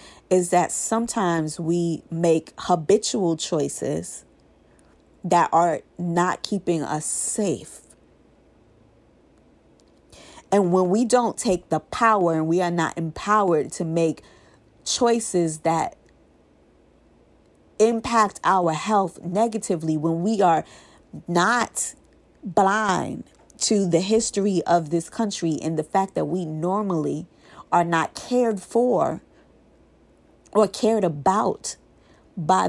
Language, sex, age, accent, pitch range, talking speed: English, female, 30-49, American, 165-215 Hz, 105 wpm